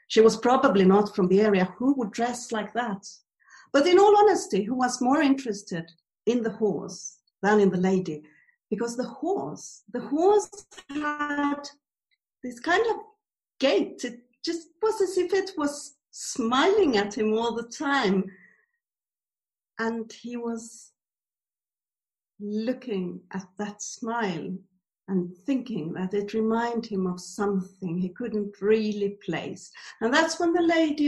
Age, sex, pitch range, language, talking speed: 50-69, female, 195-255 Hz, English, 145 wpm